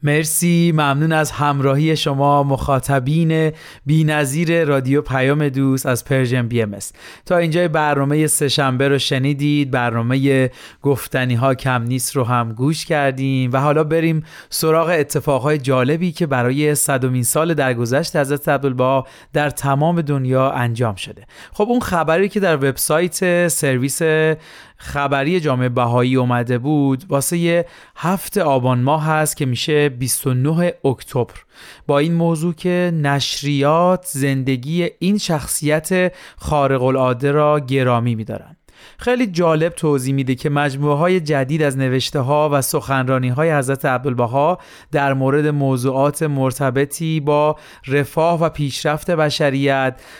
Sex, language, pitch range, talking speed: male, Persian, 135-155 Hz, 135 wpm